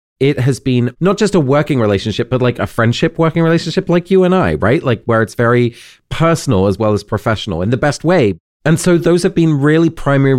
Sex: male